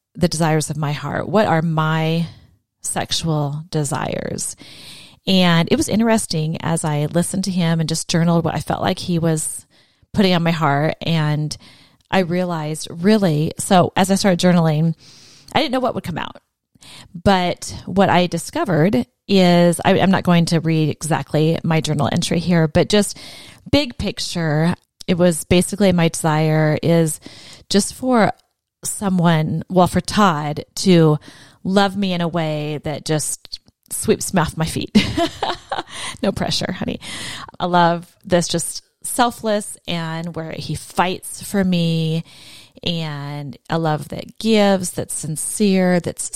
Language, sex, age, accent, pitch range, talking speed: English, female, 30-49, American, 155-185 Hz, 150 wpm